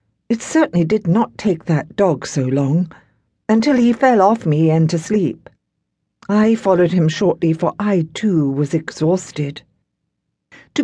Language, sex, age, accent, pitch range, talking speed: English, female, 60-79, British, 155-230 Hz, 150 wpm